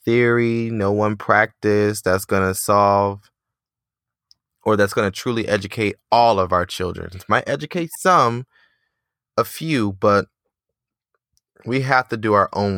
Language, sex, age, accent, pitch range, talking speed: English, male, 20-39, American, 95-115 Hz, 145 wpm